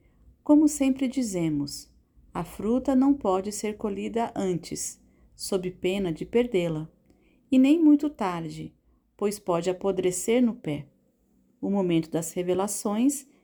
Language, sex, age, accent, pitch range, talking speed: Portuguese, female, 40-59, Brazilian, 185-245 Hz, 120 wpm